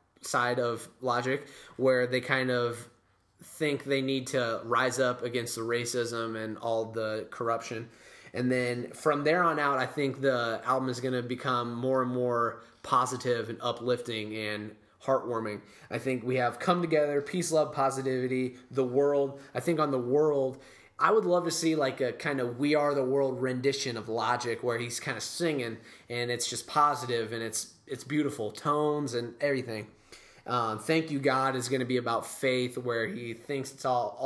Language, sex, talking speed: English, male, 185 wpm